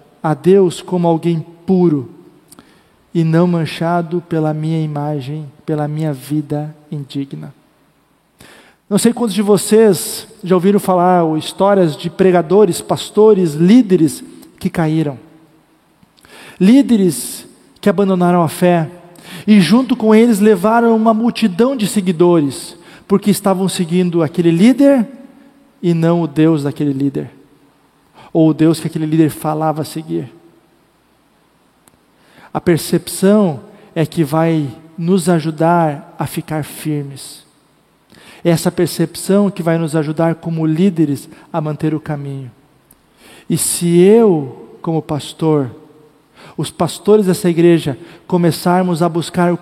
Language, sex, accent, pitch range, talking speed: Portuguese, male, Brazilian, 155-195 Hz, 120 wpm